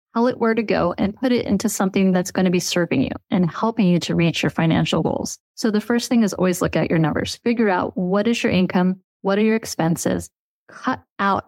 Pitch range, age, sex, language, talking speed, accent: 185-225 Hz, 30-49, female, English, 240 wpm, American